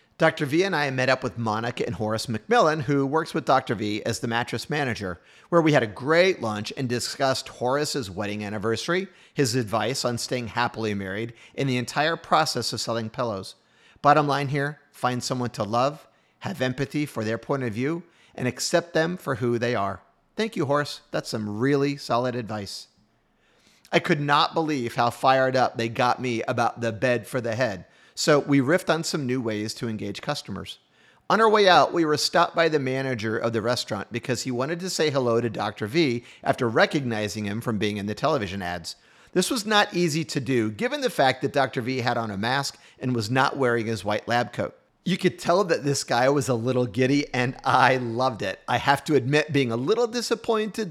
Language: English